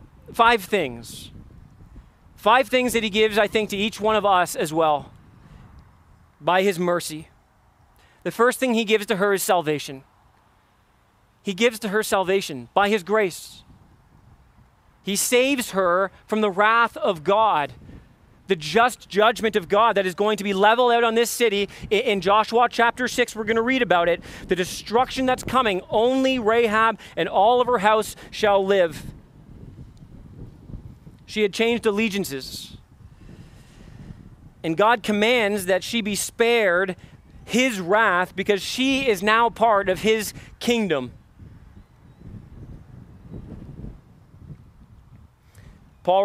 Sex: male